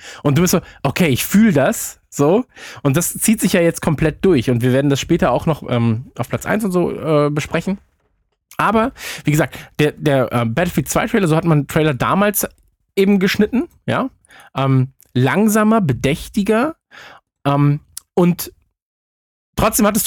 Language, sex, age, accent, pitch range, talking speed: German, male, 20-39, German, 145-205 Hz, 170 wpm